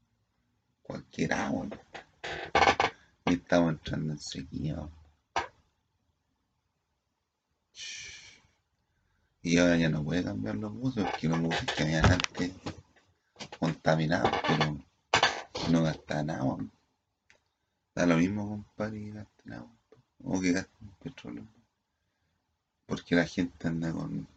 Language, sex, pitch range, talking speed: Spanish, male, 80-95 Hz, 125 wpm